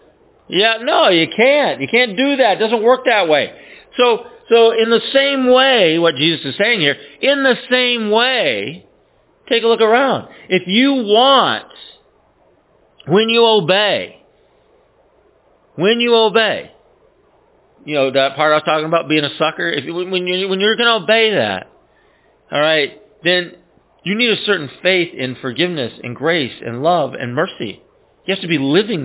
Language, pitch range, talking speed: English, 165-240 Hz, 170 wpm